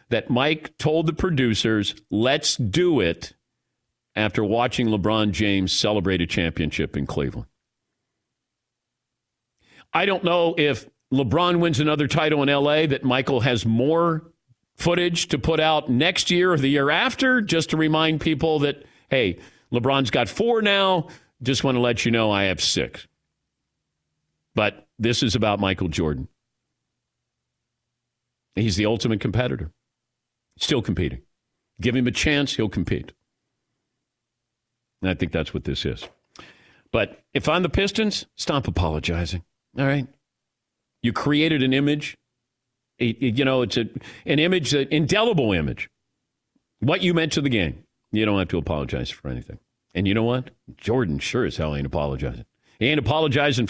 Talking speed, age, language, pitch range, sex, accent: 145 wpm, 50-69, English, 110-155 Hz, male, American